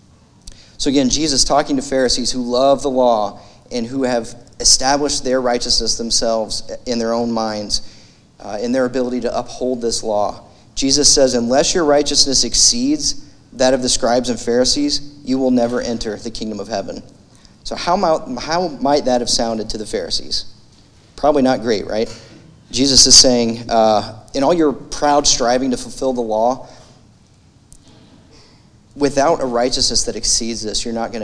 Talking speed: 165 wpm